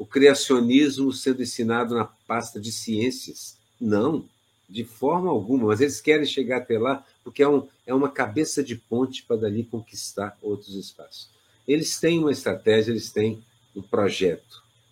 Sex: male